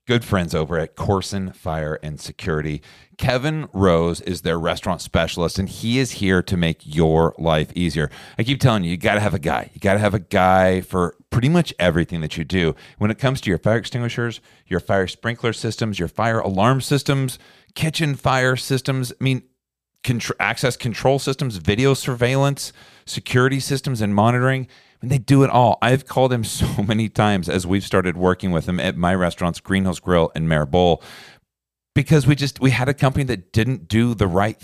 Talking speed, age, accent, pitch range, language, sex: 195 wpm, 40-59, American, 90-125 Hz, English, male